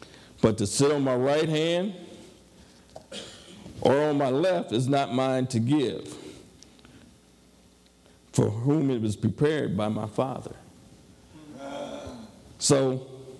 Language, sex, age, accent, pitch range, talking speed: English, male, 50-69, American, 125-175 Hz, 110 wpm